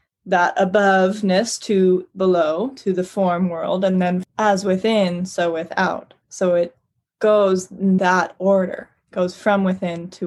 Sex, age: female, 20-39